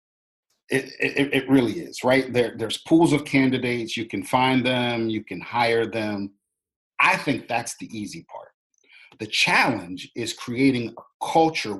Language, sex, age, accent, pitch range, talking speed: English, male, 40-59, American, 110-140 Hz, 160 wpm